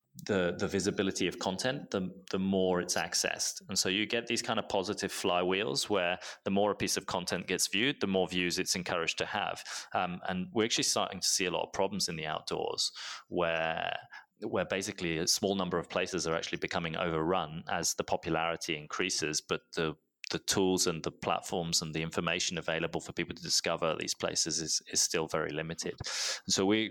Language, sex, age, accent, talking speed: English, male, 20-39, British, 200 wpm